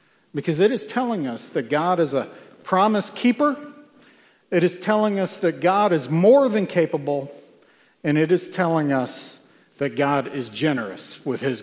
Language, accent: English, American